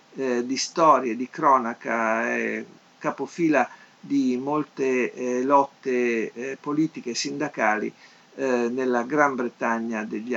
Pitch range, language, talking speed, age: 125-160 Hz, Italian, 115 wpm, 50-69